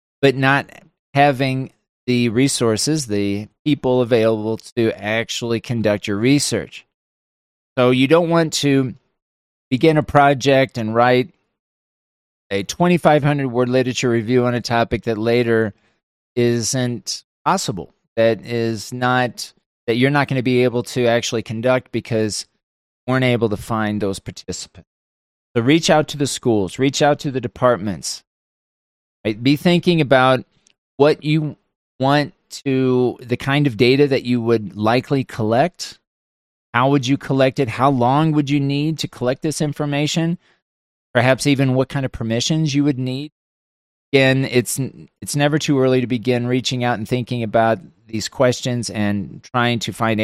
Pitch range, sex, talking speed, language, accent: 110-140 Hz, male, 150 wpm, English, American